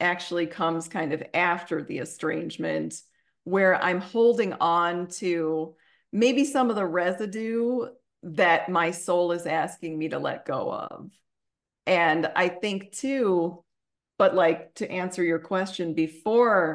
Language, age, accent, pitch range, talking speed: English, 40-59, American, 165-190 Hz, 135 wpm